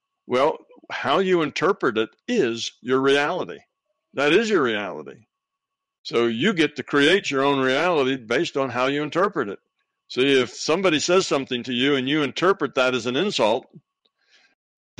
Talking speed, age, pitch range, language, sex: 165 wpm, 60-79, 125-195 Hz, English, male